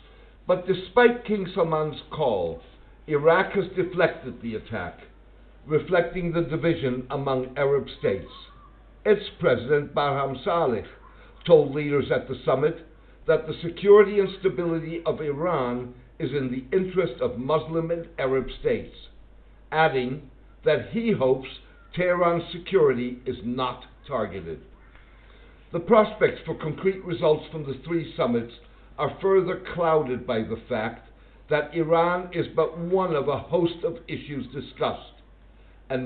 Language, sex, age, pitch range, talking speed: English, male, 60-79, 130-170 Hz, 130 wpm